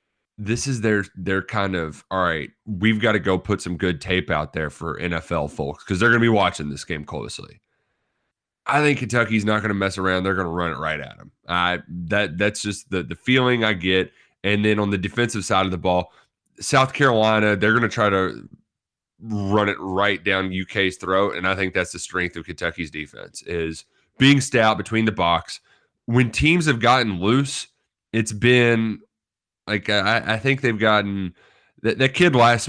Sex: male